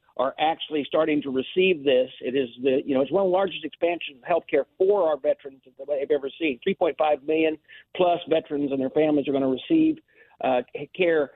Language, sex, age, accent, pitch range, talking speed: English, male, 50-69, American, 140-175 Hz, 220 wpm